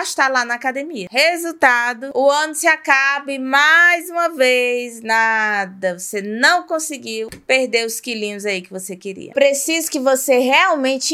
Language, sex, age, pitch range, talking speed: Portuguese, female, 20-39, 230-305 Hz, 150 wpm